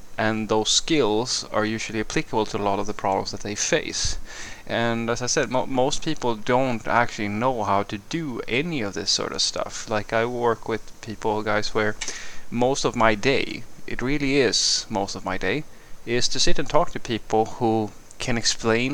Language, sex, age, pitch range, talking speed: English, male, 20-39, 105-125 Hz, 195 wpm